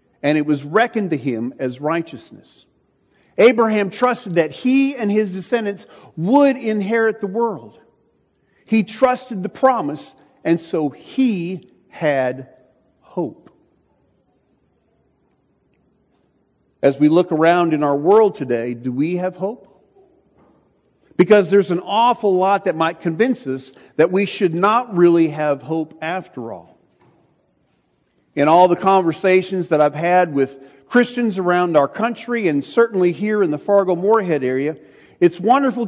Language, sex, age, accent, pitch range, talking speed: English, male, 50-69, American, 150-215 Hz, 130 wpm